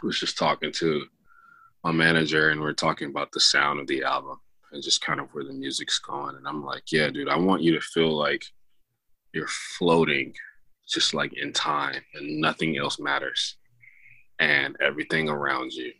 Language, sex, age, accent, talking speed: English, male, 20-39, American, 185 wpm